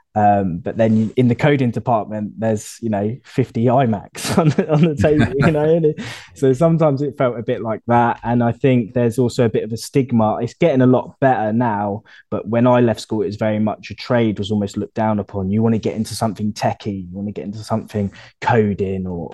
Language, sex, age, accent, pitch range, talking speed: English, male, 20-39, British, 100-115 Hz, 230 wpm